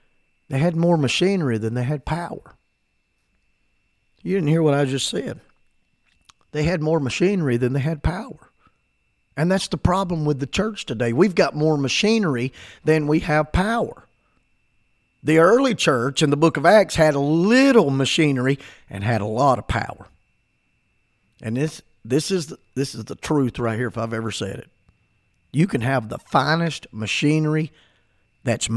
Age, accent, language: 50-69, American, English